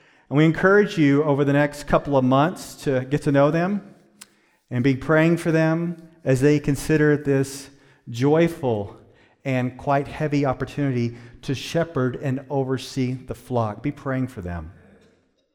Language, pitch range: English, 130-170 Hz